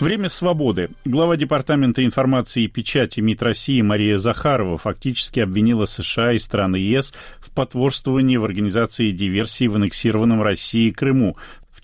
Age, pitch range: 40-59, 110-135 Hz